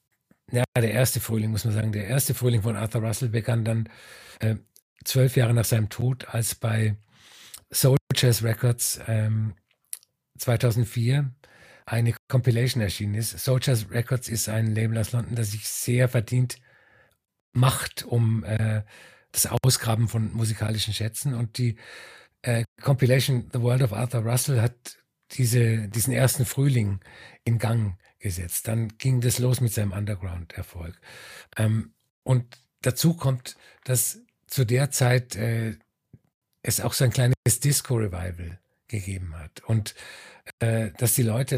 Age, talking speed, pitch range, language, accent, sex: 50-69, 135 wpm, 110-125 Hz, German, German, male